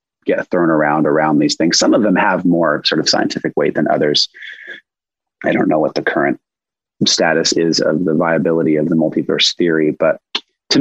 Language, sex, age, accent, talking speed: English, male, 30-49, American, 190 wpm